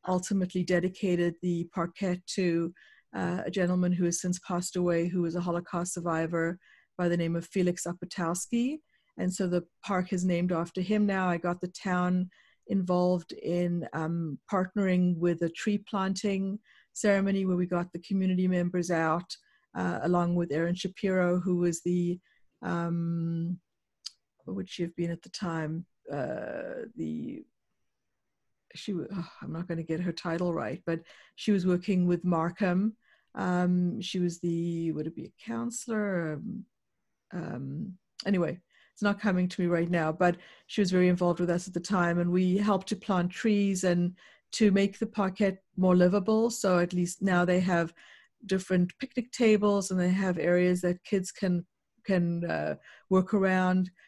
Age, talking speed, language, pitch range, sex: 60-79, 165 wpm, English, 175-190 Hz, female